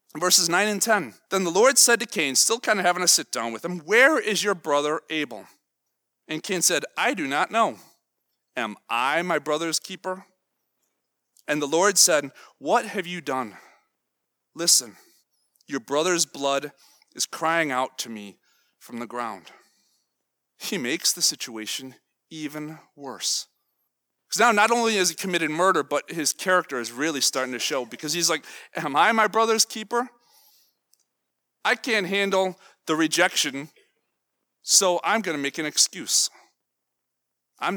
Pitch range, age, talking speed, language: 135-195 Hz, 30-49, 155 wpm, English